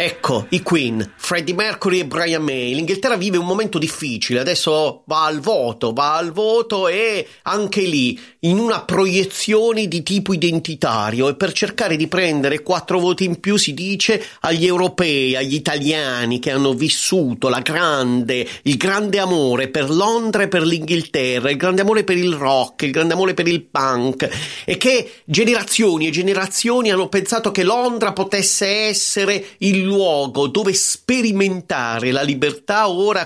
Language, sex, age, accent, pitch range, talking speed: Italian, male, 30-49, native, 130-190 Hz, 150 wpm